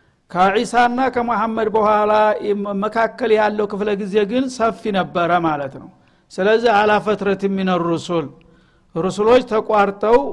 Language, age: Amharic, 60-79